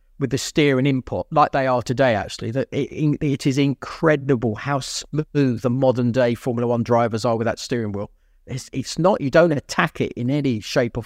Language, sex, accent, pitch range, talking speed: English, male, British, 120-145 Hz, 200 wpm